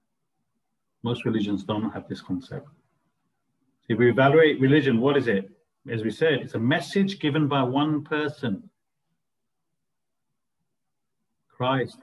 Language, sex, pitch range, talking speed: English, male, 110-145 Hz, 120 wpm